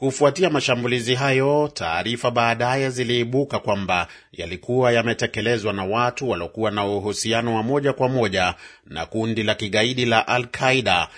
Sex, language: male, Swahili